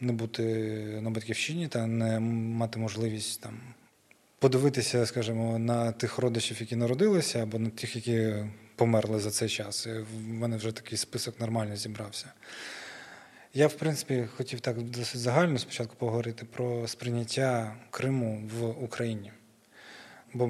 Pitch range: 115-130 Hz